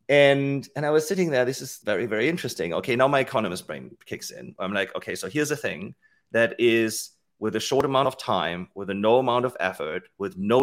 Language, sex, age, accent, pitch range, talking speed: English, male, 30-49, German, 110-140 Hz, 230 wpm